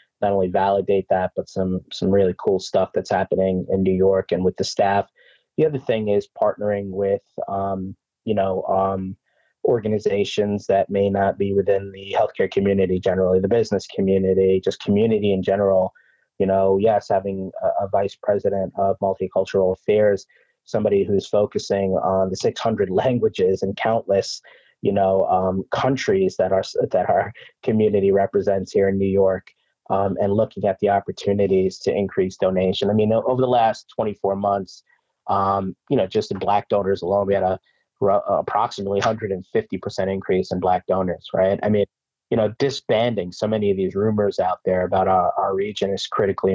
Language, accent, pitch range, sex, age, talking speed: English, American, 95-105 Hz, male, 20-39, 175 wpm